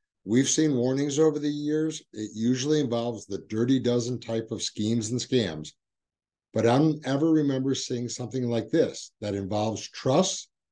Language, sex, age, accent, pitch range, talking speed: English, male, 60-79, American, 115-150 Hz, 160 wpm